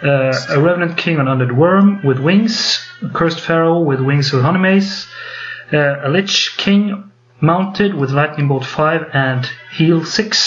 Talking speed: 160 wpm